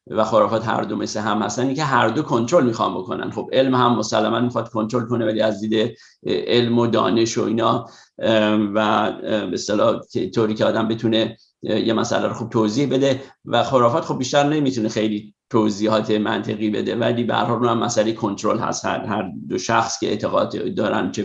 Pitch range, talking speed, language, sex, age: 110-120 Hz, 185 wpm, Persian, male, 50-69